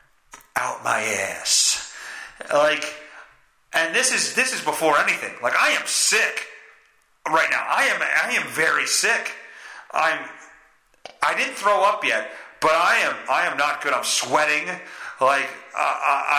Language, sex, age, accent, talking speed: English, male, 30-49, American, 145 wpm